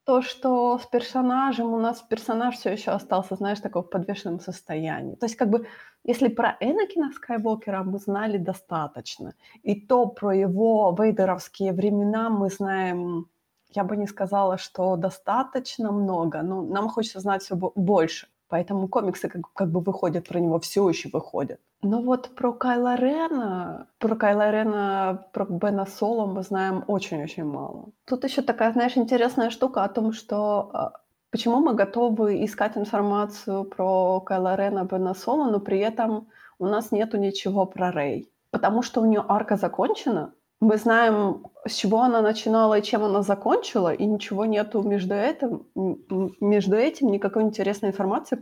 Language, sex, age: Ukrainian, female, 20-39